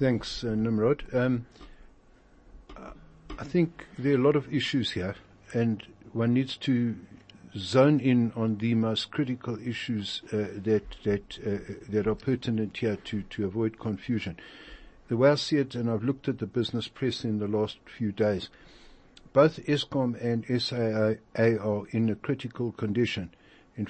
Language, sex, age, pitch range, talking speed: English, male, 60-79, 110-135 Hz, 160 wpm